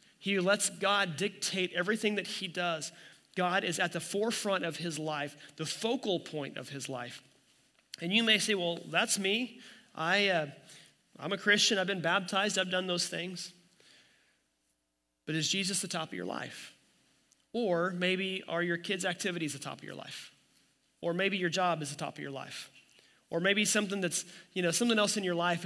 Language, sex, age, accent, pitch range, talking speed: English, male, 30-49, American, 165-205 Hz, 190 wpm